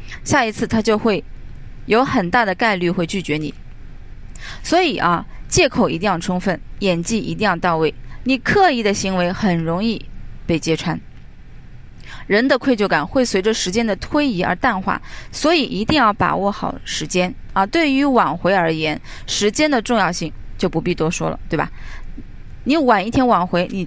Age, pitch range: 20-39, 175-265 Hz